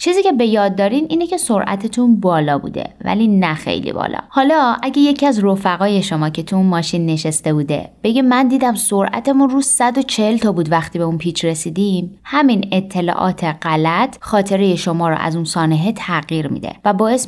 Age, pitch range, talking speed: 20-39, 170-220 Hz, 175 wpm